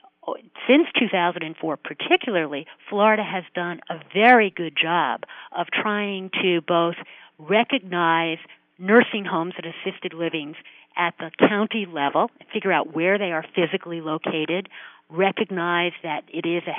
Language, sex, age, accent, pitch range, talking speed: English, female, 50-69, American, 175-215 Hz, 130 wpm